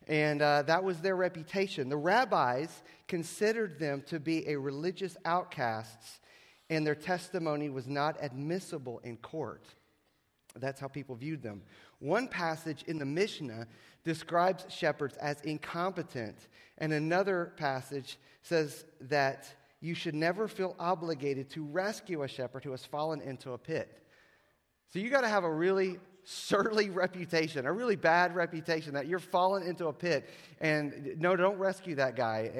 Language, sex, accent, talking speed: English, male, American, 150 wpm